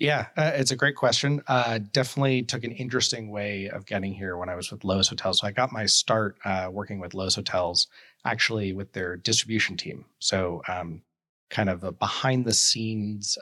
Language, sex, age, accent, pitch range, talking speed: English, male, 30-49, American, 95-115 Hz, 195 wpm